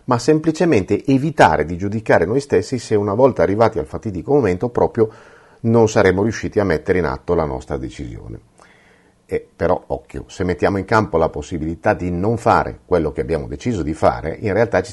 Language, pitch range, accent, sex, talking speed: Italian, 90-125 Hz, native, male, 185 wpm